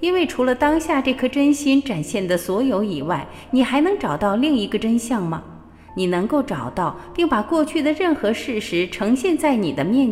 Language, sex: Chinese, female